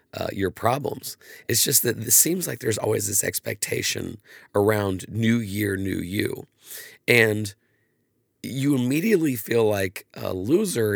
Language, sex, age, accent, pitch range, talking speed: English, male, 40-59, American, 100-120 Hz, 135 wpm